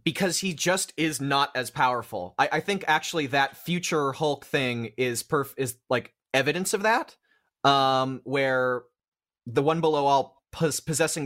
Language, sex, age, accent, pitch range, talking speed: English, male, 30-49, American, 125-160 Hz, 160 wpm